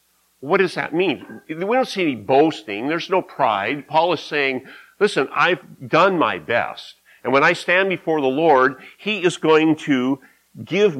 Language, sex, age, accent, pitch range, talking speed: English, male, 50-69, American, 115-170 Hz, 175 wpm